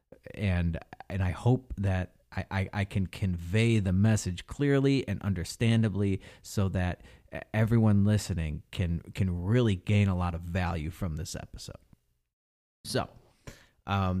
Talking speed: 135 wpm